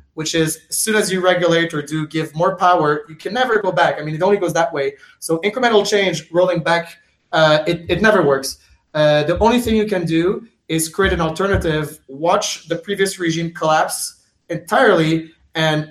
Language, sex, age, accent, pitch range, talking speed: English, male, 20-39, Canadian, 150-180 Hz, 195 wpm